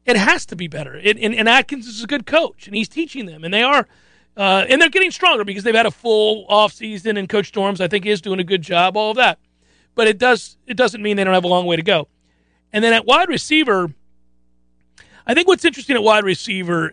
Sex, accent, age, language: male, American, 40-59, English